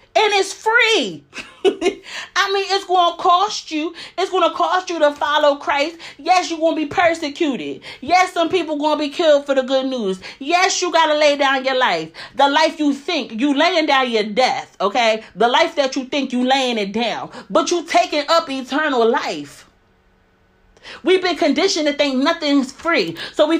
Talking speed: 195 wpm